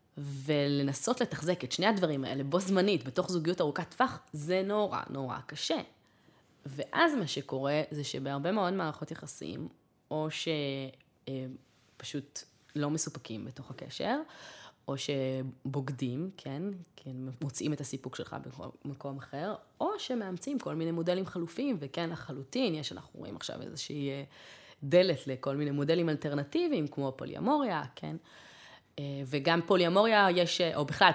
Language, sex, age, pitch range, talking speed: Hebrew, female, 20-39, 140-185 Hz, 130 wpm